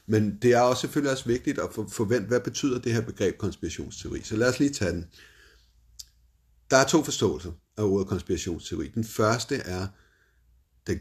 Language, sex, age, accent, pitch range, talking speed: Danish, male, 60-79, native, 85-110 Hz, 175 wpm